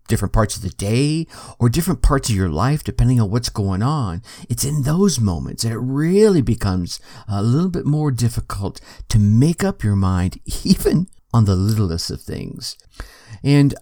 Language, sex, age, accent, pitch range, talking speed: English, male, 50-69, American, 100-125 Hz, 180 wpm